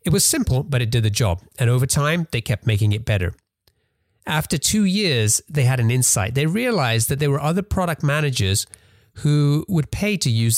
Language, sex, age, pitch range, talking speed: English, male, 30-49, 105-140 Hz, 205 wpm